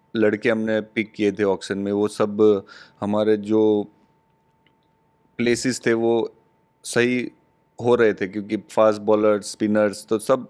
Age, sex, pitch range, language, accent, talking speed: 20-39, male, 105-130 Hz, English, Indian, 135 wpm